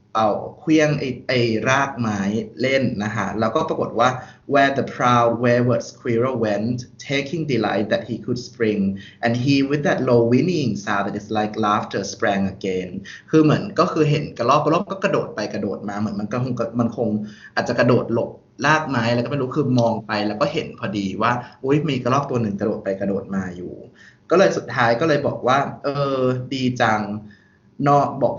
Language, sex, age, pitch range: Thai, male, 20-39, 110-140 Hz